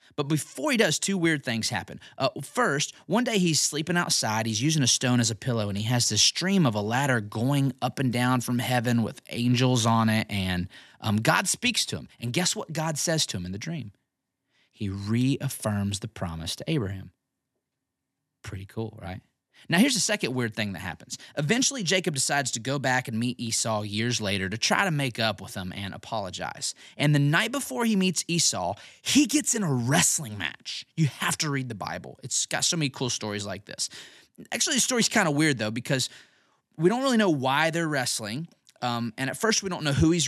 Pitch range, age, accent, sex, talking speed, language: 115-170 Hz, 30-49, American, male, 215 wpm, English